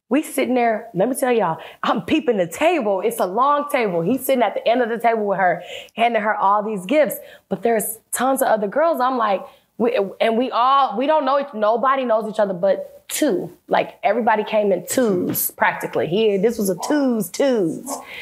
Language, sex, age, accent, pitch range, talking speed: English, female, 20-39, American, 205-270 Hz, 210 wpm